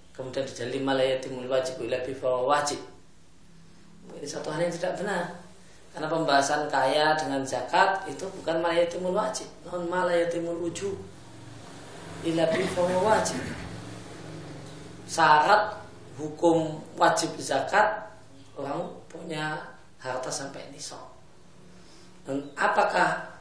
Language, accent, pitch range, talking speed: Indonesian, native, 130-170 Hz, 95 wpm